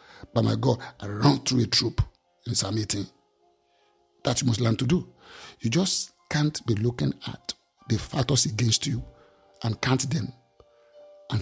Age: 50-69